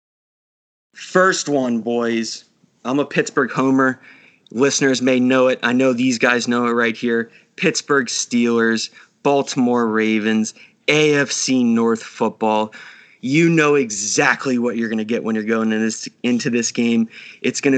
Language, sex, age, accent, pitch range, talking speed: English, male, 20-39, American, 120-140 Hz, 150 wpm